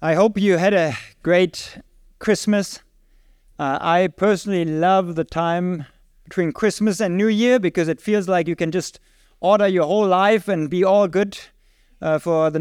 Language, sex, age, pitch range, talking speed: English, male, 50-69, 140-185 Hz, 170 wpm